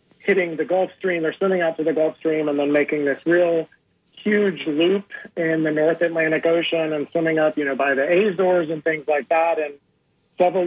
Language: English